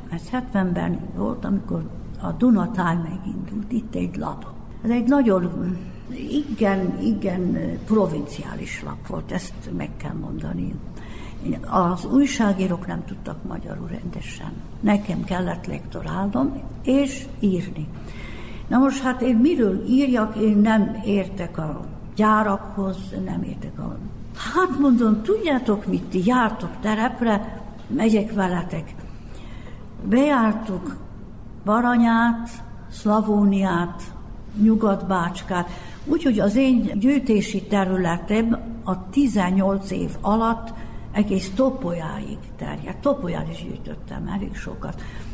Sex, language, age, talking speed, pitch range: female, Hungarian, 60-79, 100 wpm, 185-230 Hz